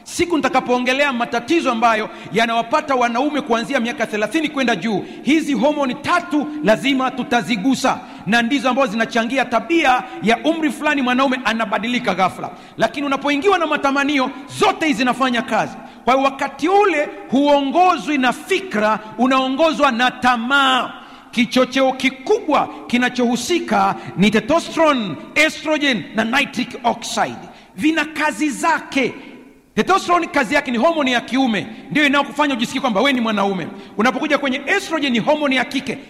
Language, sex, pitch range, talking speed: Swahili, male, 235-295 Hz, 130 wpm